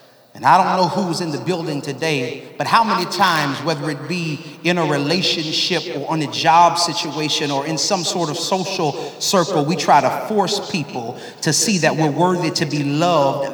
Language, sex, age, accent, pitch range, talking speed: English, male, 30-49, American, 160-200 Hz, 195 wpm